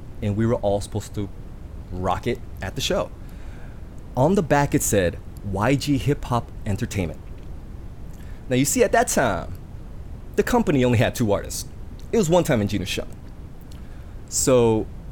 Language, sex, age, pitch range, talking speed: English, male, 30-49, 90-130 Hz, 160 wpm